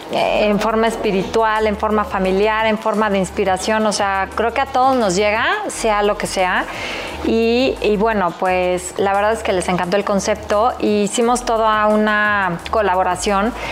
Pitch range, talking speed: 195-225 Hz, 170 wpm